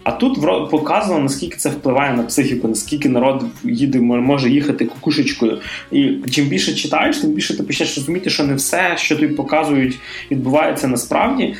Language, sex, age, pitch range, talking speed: Russian, male, 20-39, 125-165 Hz, 165 wpm